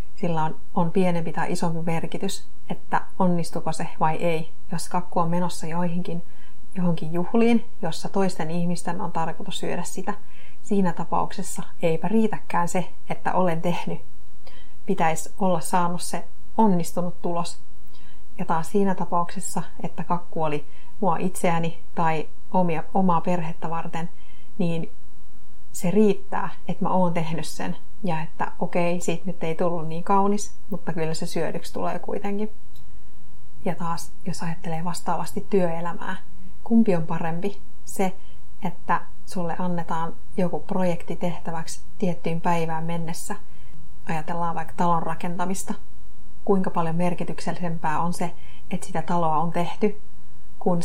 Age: 30-49